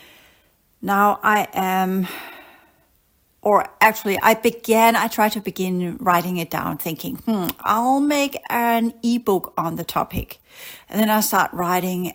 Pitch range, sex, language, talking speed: 180-215 Hz, female, English, 140 wpm